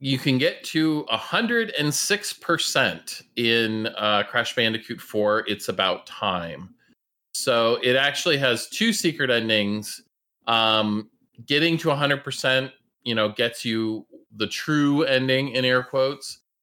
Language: English